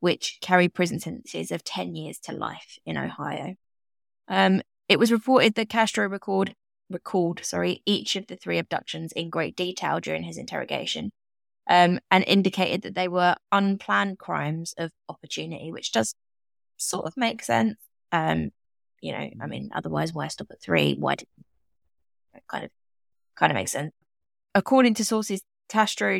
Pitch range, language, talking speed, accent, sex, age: 145-195 Hz, English, 165 wpm, British, female, 20-39